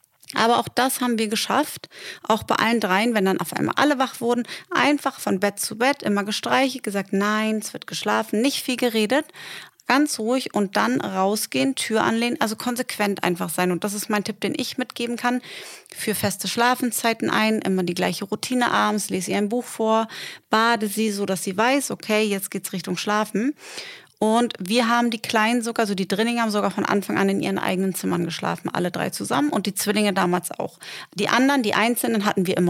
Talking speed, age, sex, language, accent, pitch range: 205 wpm, 30-49, female, German, German, 200-245 Hz